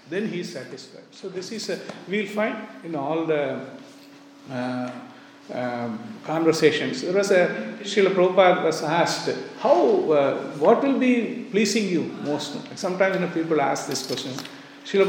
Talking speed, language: 145 wpm, English